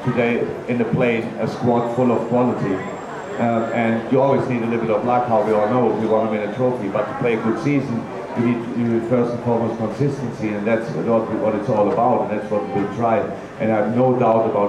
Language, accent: English, German